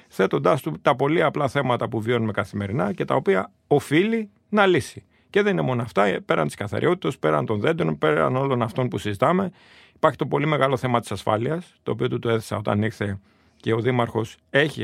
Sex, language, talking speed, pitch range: male, Greek, 200 wpm, 110-130 Hz